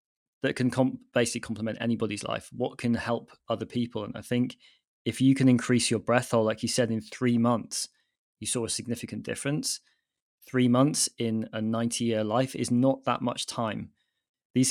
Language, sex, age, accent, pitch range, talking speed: English, male, 20-39, British, 115-130 Hz, 180 wpm